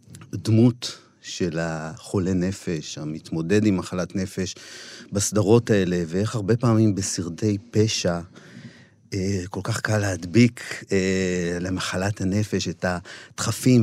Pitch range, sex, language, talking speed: 95-115 Hz, male, Hebrew, 100 wpm